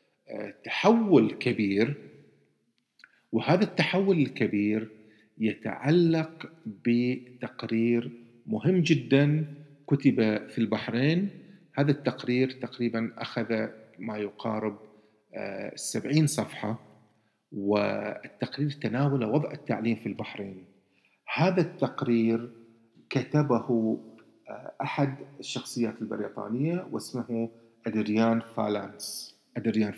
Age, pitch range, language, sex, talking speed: 50-69, 110-135 Hz, Arabic, male, 70 wpm